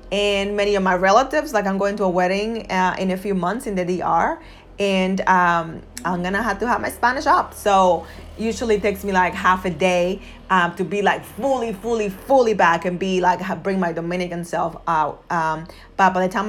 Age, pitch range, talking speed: 30-49, 185-225 Hz, 215 wpm